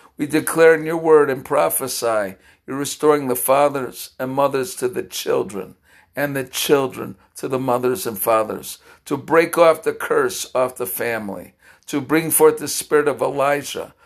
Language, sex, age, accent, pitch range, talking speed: English, male, 60-79, American, 130-155 Hz, 165 wpm